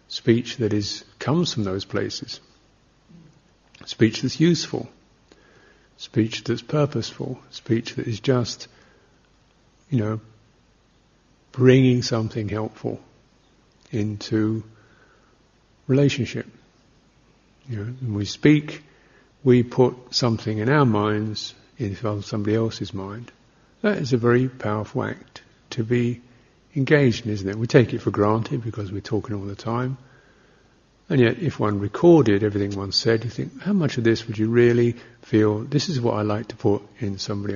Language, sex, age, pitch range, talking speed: English, male, 50-69, 105-130 Hz, 140 wpm